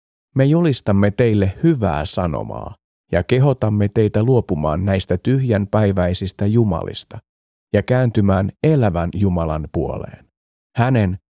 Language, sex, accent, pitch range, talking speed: Finnish, male, native, 90-115 Hz, 95 wpm